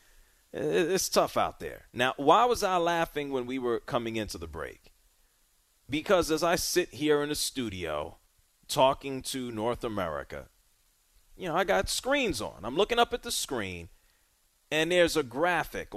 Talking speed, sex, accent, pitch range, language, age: 165 wpm, male, American, 110-140 Hz, English, 40-59